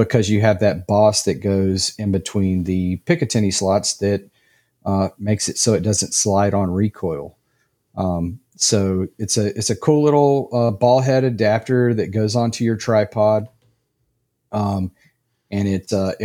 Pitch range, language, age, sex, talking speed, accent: 100-120 Hz, English, 40-59, male, 160 wpm, American